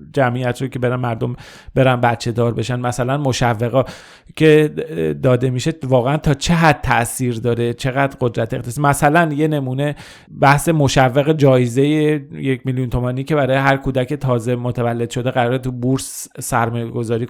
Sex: male